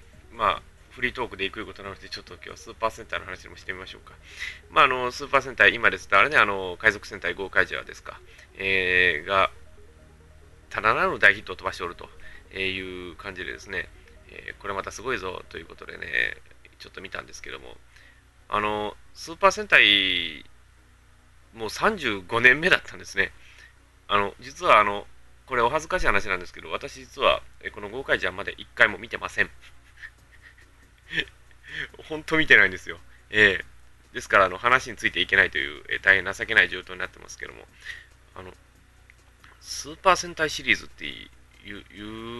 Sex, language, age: male, Japanese, 20-39